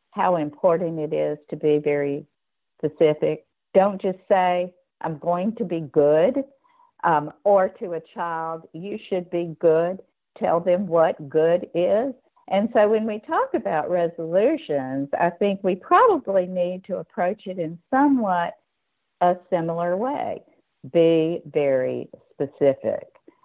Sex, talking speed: female, 135 wpm